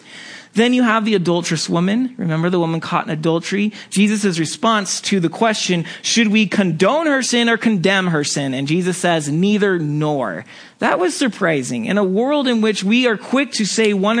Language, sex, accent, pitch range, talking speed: English, male, American, 155-210 Hz, 190 wpm